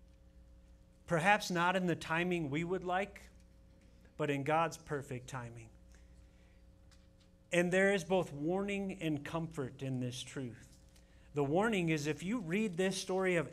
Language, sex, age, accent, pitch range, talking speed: English, male, 40-59, American, 155-200 Hz, 140 wpm